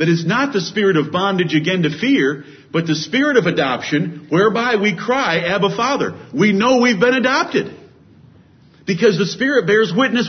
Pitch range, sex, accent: 165-235 Hz, male, American